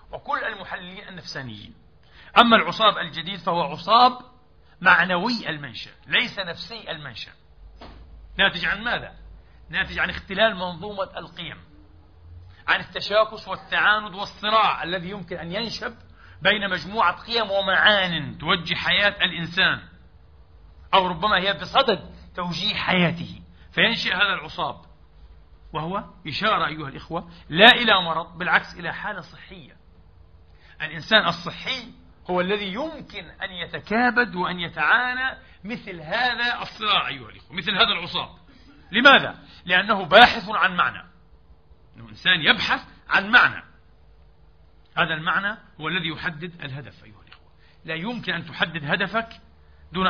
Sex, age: male, 50-69